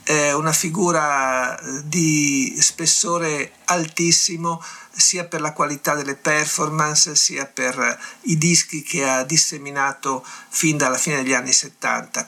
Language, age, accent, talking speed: Italian, 50-69, native, 115 wpm